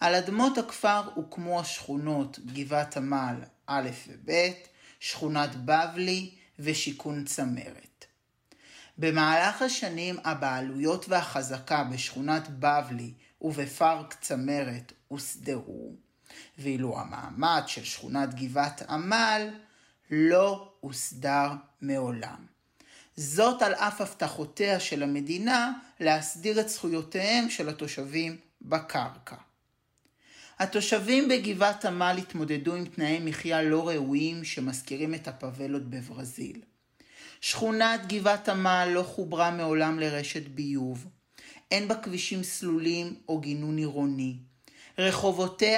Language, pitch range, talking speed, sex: Hebrew, 140-185 Hz, 95 wpm, male